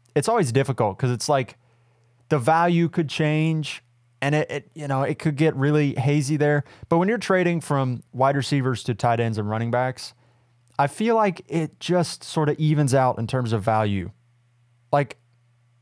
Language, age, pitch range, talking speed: English, 20-39, 120-145 Hz, 180 wpm